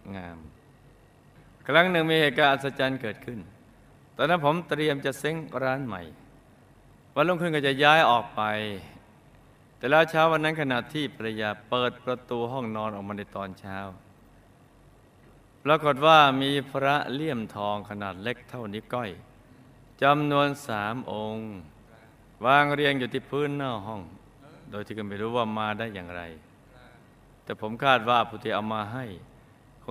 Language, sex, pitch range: Thai, male, 105-135 Hz